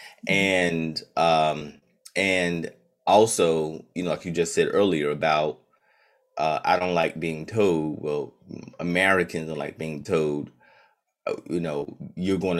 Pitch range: 80-90 Hz